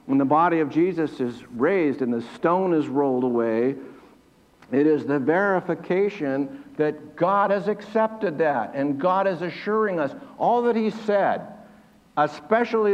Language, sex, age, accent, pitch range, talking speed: English, male, 60-79, American, 130-180 Hz, 150 wpm